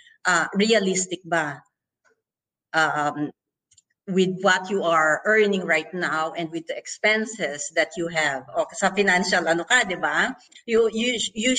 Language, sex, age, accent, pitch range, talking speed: Filipino, female, 50-69, native, 170-230 Hz, 135 wpm